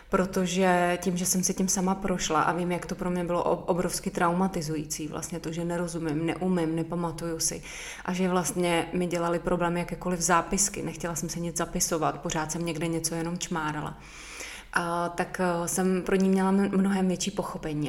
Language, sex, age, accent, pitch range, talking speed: Czech, female, 20-39, native, 165-180 Hz, 175 wpm